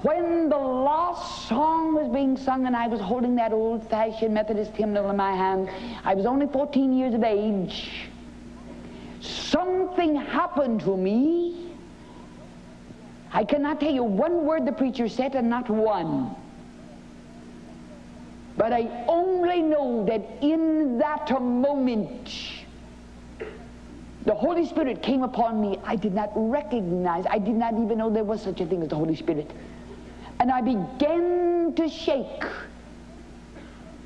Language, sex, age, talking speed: English, female, 60-79, 135 wpm